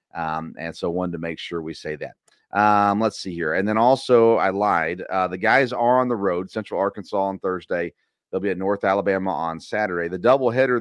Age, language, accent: 30-49, English, American